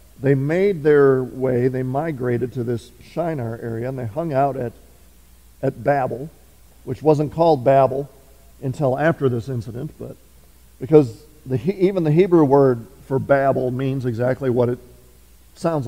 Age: 50-69